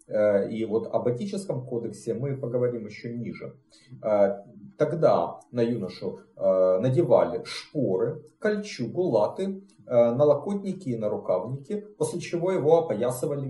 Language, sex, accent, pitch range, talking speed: Russian, male, native, 105-155 Hz, 105 wpm